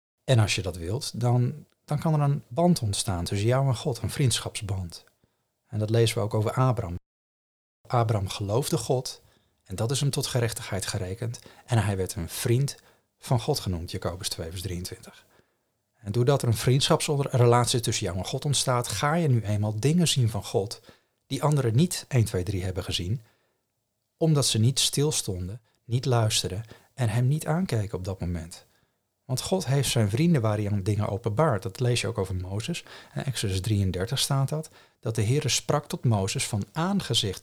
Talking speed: 185 wpm